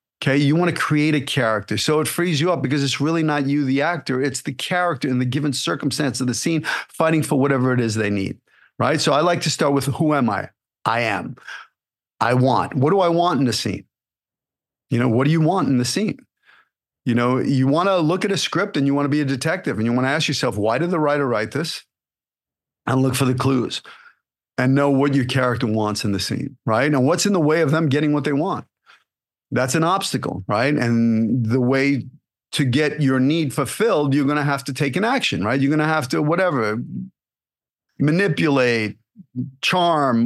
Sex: male